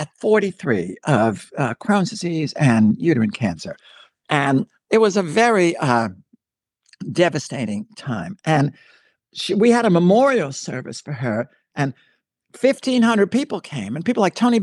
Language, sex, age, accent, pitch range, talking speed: English, male, 60-79, American, 135-205 Hz, 140 wpm